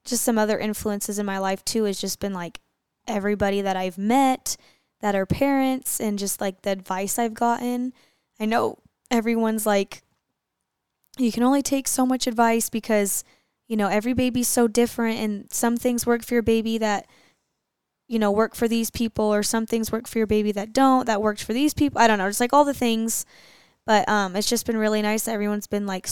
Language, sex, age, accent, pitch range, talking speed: English, female, 10-29, American, 200-240 Hz, 210 wpm